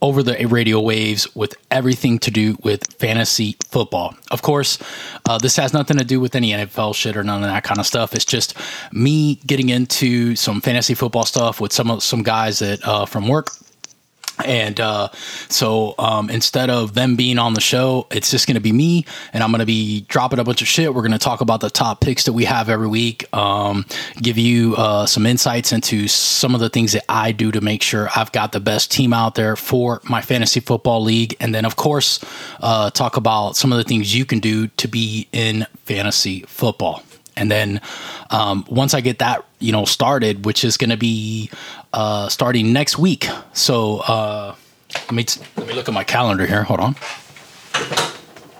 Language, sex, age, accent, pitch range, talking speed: English, male, 20-39, American, 110-125 Hz, 210 wpm